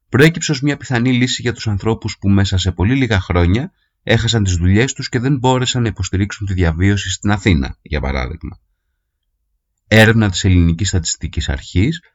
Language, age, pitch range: Greek, 30-49, 90-120 Hz